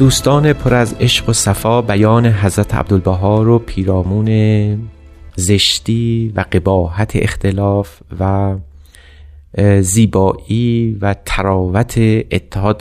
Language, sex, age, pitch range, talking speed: Persian, male, 30-49, 95-110 Hz, 95 wpm